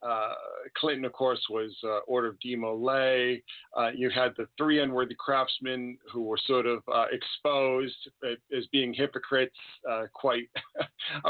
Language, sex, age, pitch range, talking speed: English, male, 40-59, 120-145 Hz, 145 wpm